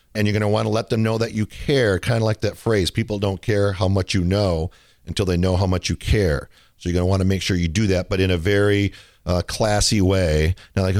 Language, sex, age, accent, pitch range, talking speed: English, male, 50-69, American, 95-115 Hz, 280 wpm